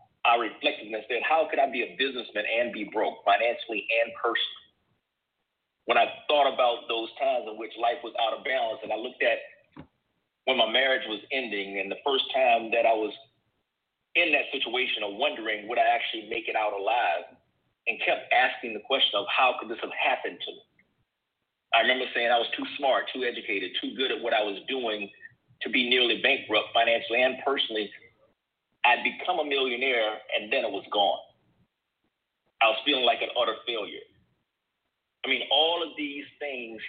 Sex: male